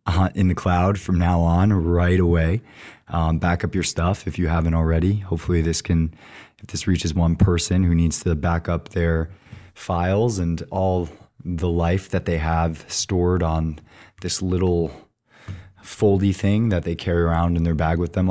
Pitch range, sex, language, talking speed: 85-95 Hz, male, English, 180 wpm